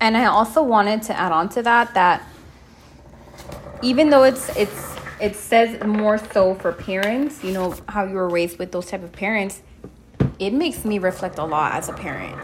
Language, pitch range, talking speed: English, 180-225 Hz, 195 wpm